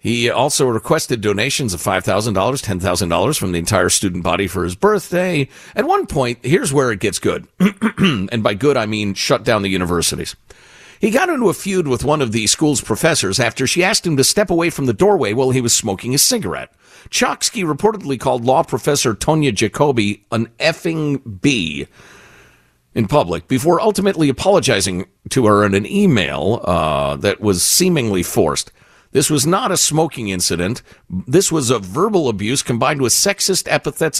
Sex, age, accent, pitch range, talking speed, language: male, 50-69, American, 105-165 Hz, 175 wpm, English